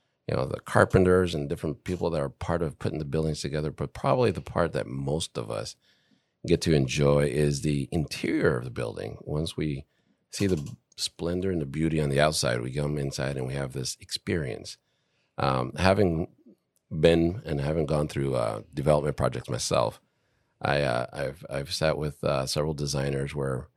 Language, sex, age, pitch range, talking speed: English, male, 40-59, 65-75 Hz, 180 wpm